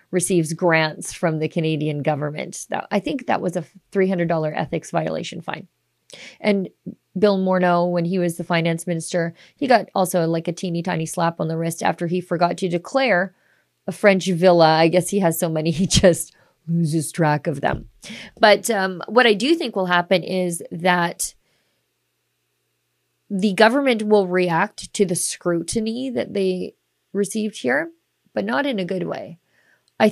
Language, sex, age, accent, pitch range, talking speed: English, female, 30-49, American, 170-215 Hz, 165 wpm